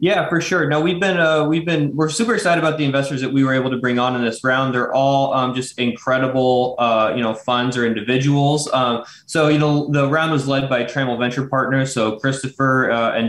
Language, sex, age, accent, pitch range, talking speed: English, male, 20-39, American, 120-140 Hz, 235 wpm